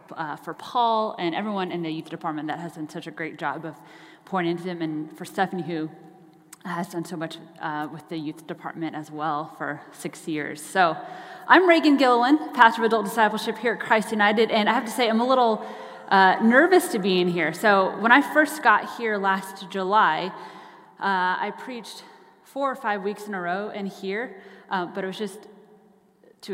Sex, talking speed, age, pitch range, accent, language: female, 205 wpm, 30-49, 165-210 Hz, American, English